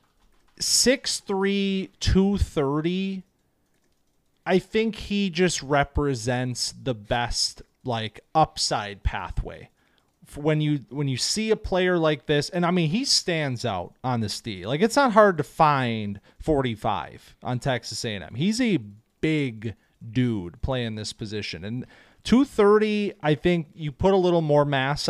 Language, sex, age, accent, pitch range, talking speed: English, male, 30-49, American, 130-180 Hz, 145 wpm